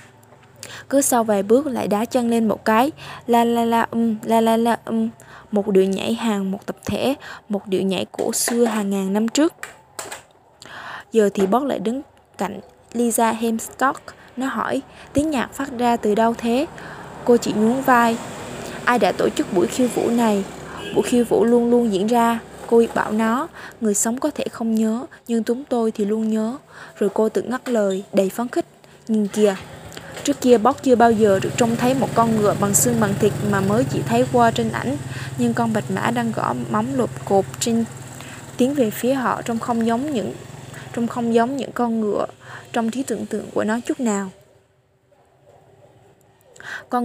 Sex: female